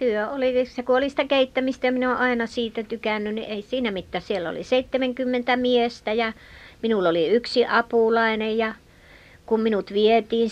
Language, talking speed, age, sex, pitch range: Finnish, 160 wpm, 50-69, male, 185-225 Hz